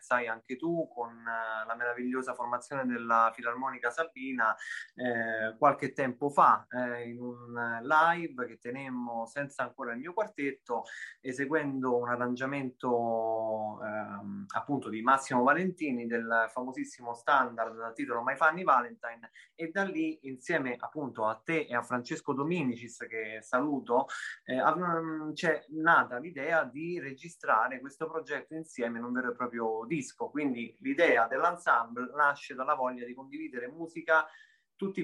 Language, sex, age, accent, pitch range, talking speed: Italian, male, 20-39, native, 120-155 Hz, 130 wpm